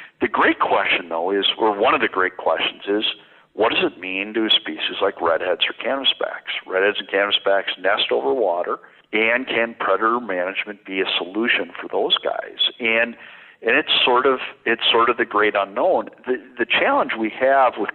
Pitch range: 90-110 Hz